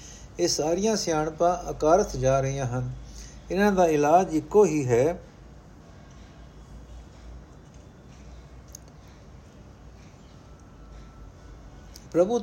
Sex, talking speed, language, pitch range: male, 70 wpm, Punjabi, 125-160 Hz